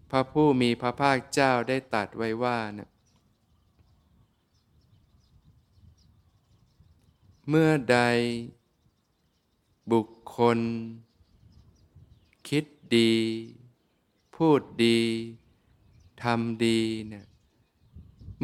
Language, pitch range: Thai, 105-120 Hz